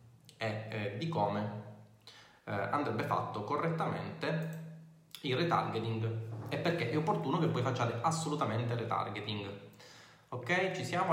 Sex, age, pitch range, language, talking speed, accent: male, 20-39, 115-160 Hz, Italian, 110 wpm, native